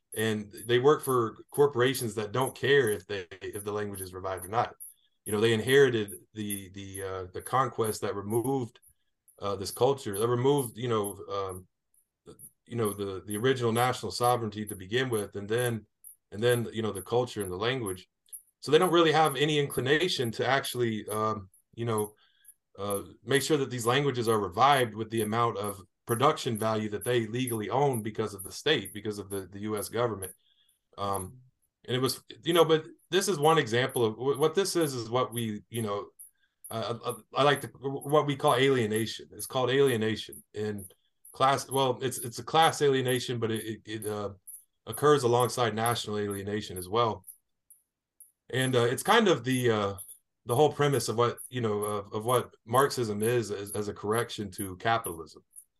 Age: 30-49